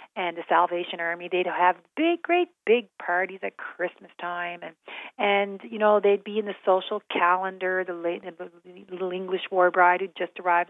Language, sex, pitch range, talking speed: English, female, 180-245 Hz, 185 wpm